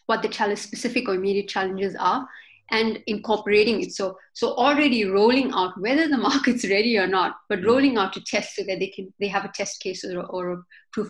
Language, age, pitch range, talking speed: English, 30-49, 190-220 Hz, 215 wpm